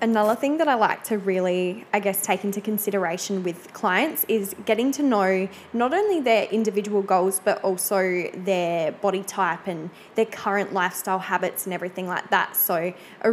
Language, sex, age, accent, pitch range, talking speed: English, female, 10-29, Australian, 185-210 Hz, 175 wpm